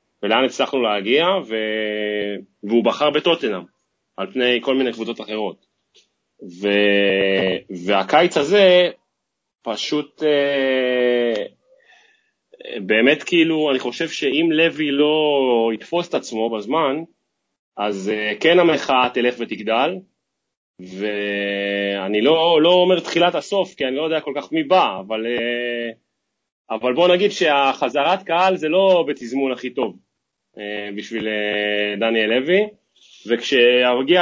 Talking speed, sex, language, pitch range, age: 100 wpm, male, Hebrew, 105-155 Hz, 30-49